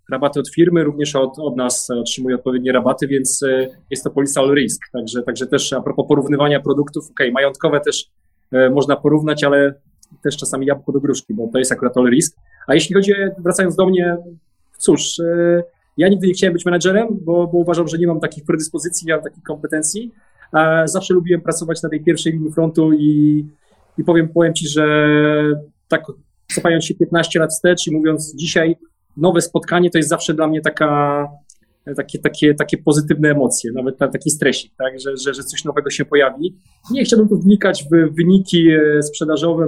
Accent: native